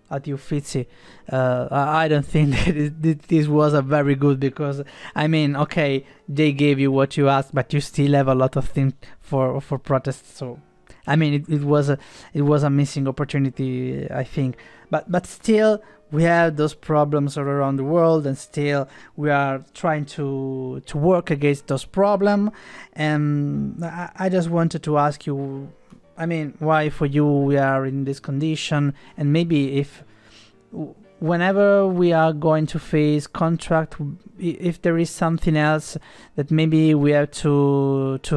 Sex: male